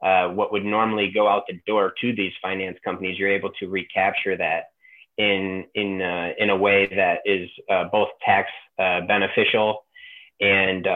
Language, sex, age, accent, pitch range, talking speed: English, male, 30-49, American, 95-110 Hz, 170 wpm